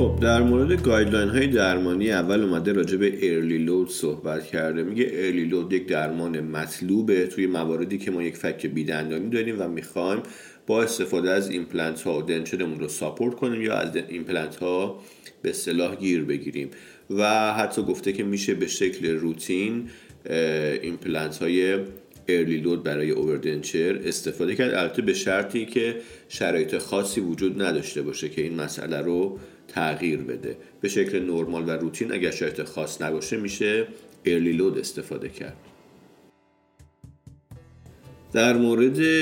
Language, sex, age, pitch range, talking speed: English, male, 40-59, 80-100 Hz, 145 wpm